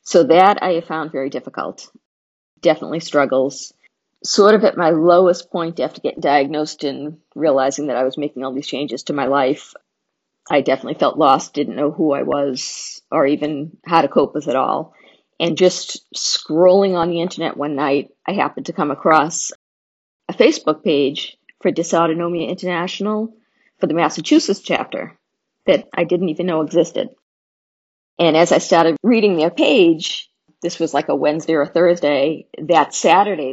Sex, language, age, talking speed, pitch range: female, English, 40-59, 165 wpm, 150-180 Hz